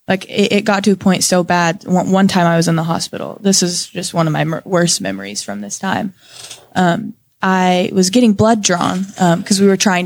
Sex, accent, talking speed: female, American, 220 wpm